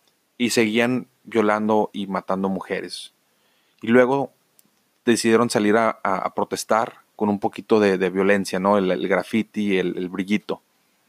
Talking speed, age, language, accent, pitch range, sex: 145 wpm, 30-49, Spanish, Mexican, 100-120 Hz, male